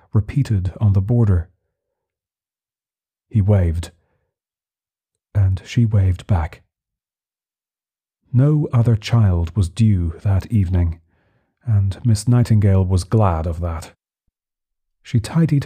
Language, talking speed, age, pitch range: English, 100 wpm, 40-59, 90-115 Hz